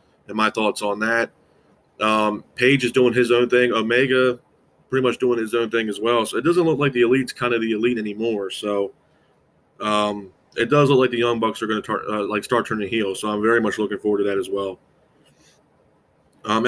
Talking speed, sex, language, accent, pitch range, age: 225 wpm, male, English, American, 105-125 Hz, 20-39